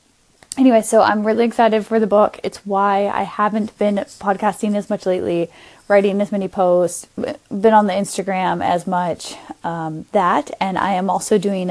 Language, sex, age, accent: English, female, 10-29, American